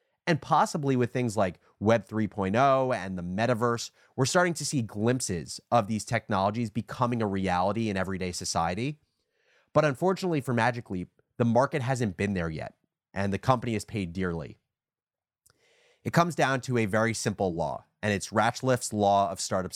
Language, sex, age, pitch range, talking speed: English, male, 30-49, 95-125 Hz, 165 wpm